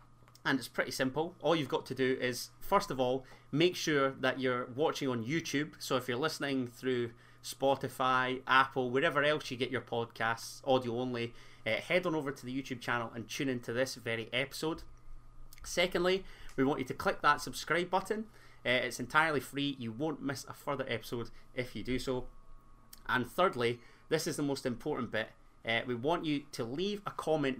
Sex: male